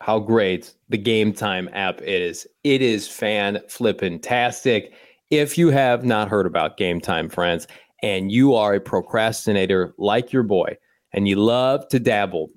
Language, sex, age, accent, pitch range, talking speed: English, male, 30-49, American, 105-130 Hz, 160 wpm